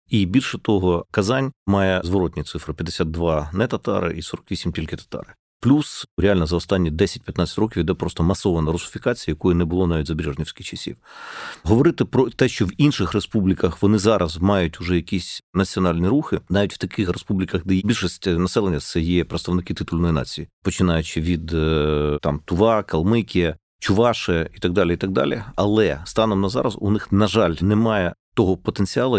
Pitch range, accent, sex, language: 85-110 Hz, native, male, Ukrainian